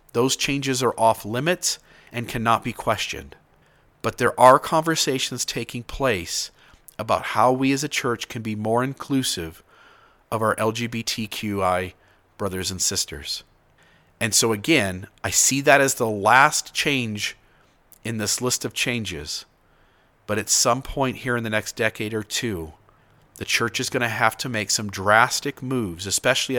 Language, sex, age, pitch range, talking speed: English, male, 40-59, 105-135 Hz, 155 wpm